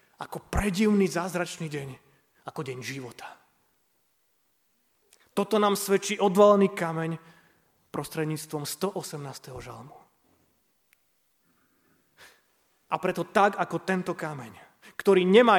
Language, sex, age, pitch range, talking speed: Slovak, male, 30-49, 145-185 Hz, 90 wpm